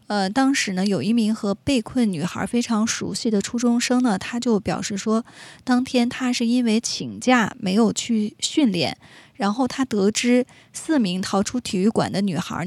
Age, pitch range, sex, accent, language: 20-39, 190-240 Hz, female, native, Chinese